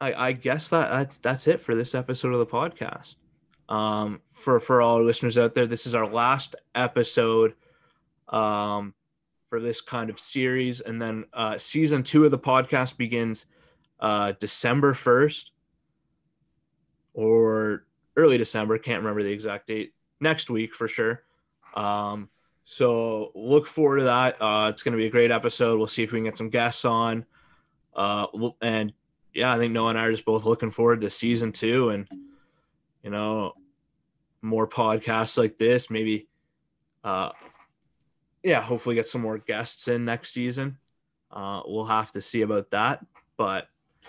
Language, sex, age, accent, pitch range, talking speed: English, male, 20-39, American, 110-125 Hz, 165 wpm